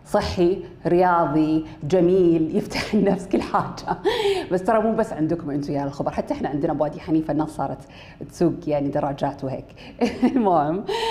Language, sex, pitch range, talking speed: Arabic, female, 150-195 Hz, 145 wpm